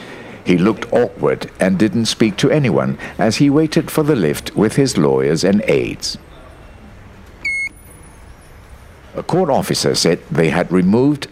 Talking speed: 140 wpm